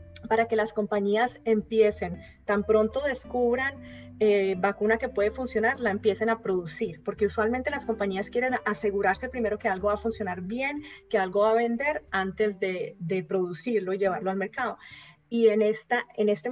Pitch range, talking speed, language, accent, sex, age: 195-225 Hz, 175 wpm, Spanish, Colombian, female, 30-49